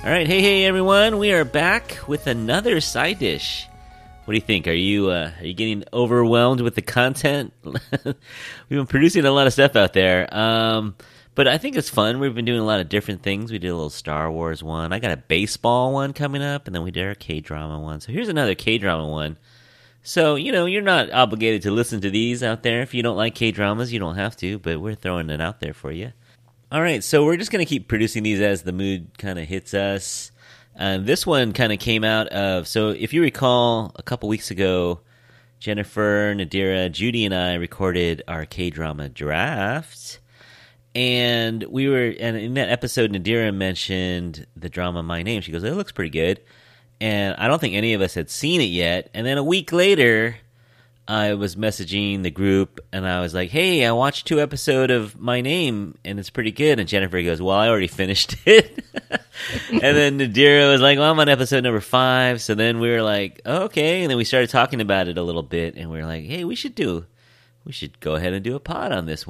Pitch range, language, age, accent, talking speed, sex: 95-125 Hz, English, 30-49, American, 225 wpm, male